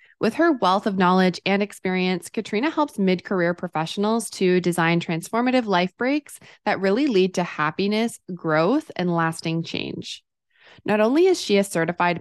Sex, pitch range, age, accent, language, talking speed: female, 170-220 Hz, 20-39, American, English, 150 wpm